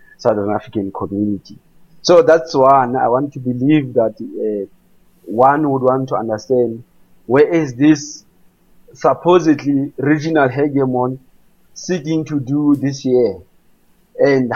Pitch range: 130-165 Hz